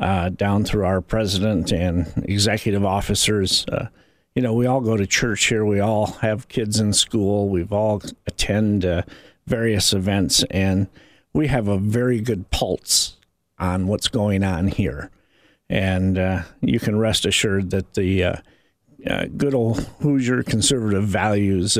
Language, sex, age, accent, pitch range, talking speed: English, male, 50-69, American, 95-110 Hz, 155 wpm